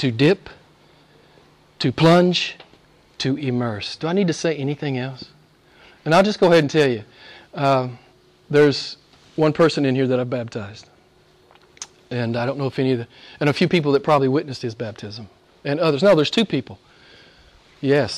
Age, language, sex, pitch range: 40-59, English, male, 135-185 Hz